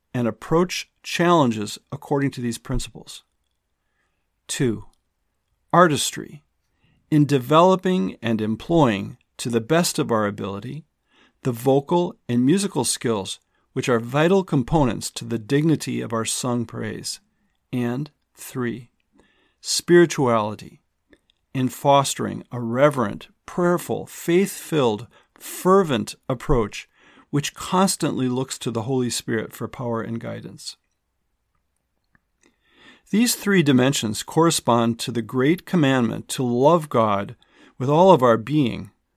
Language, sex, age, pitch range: English, male, 50-69, 115-160 Hz